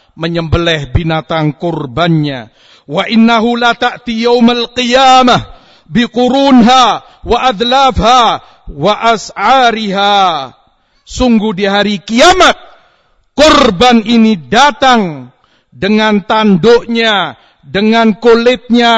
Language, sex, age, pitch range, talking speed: Indonesian, male, 50-69, 150-230 Hz, 80 wpm